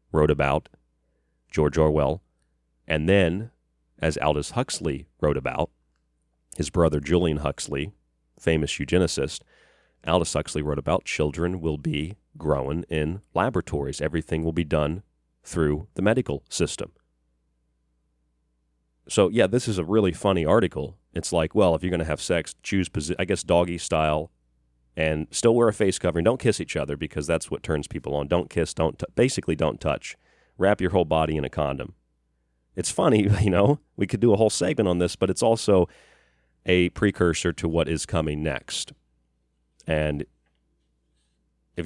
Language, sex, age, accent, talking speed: English, male, 30-49, American, 160 wpm